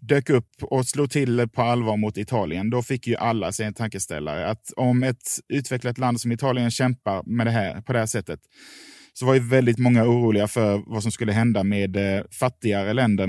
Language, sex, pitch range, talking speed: Swedish, male, 105-125 Hz, 205 wpm